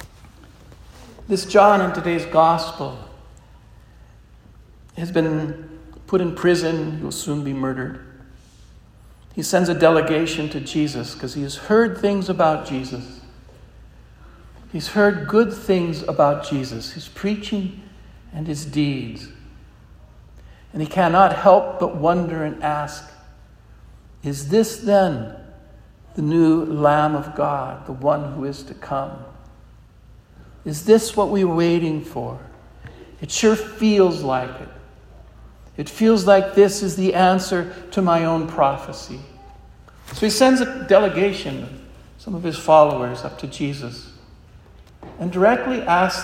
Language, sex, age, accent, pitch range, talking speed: English, male, 60-79, American, 145-195 Hz, 125 wpm